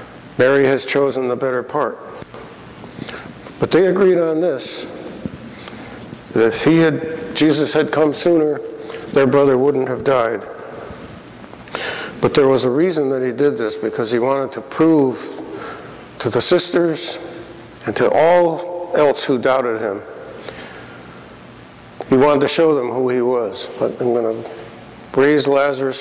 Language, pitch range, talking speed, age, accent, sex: English, 120-155 Hz, 140 wpm, 60-79, American, male